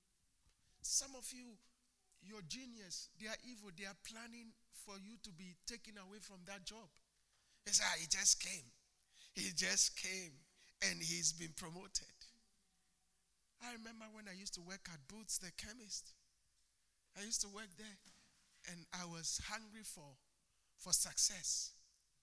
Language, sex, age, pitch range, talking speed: English, male, 50-69, 165-210 Hz, 150 wpm